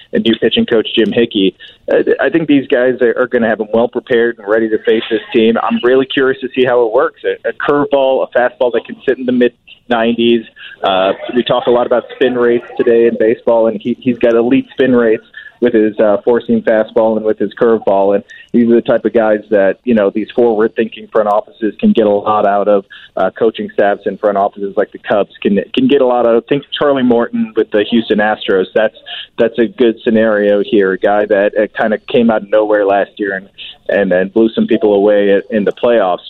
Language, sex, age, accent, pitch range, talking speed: English, male, 30-49, American, 105-125 Hz, 235 wpm